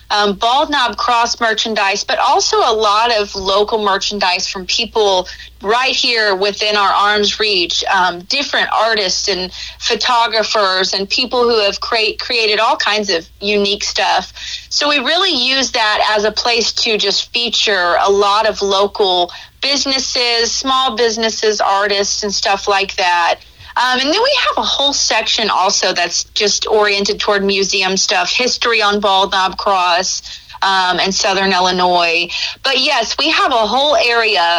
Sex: female